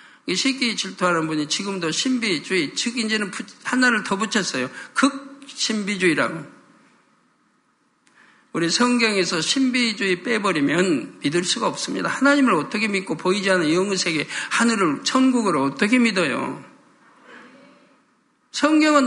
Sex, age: male, 50-69